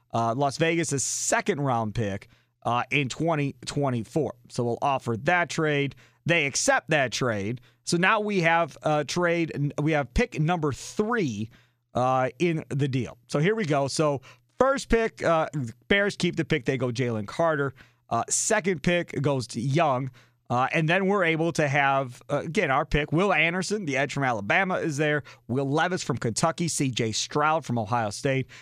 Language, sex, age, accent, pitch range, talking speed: English, male, 40-59, American, 125-165 Hz, 170 wpm